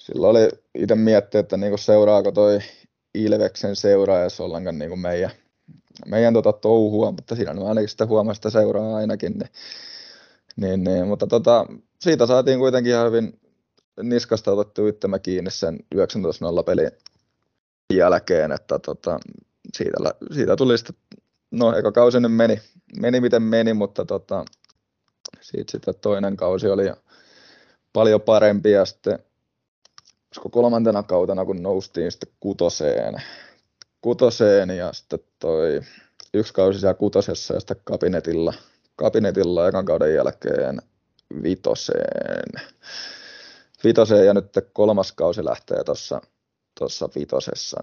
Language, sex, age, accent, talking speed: Finnish, male, 20-39, native, 115 wpm